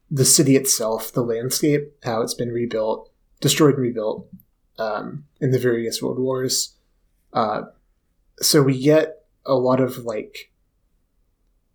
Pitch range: 110-145 Hz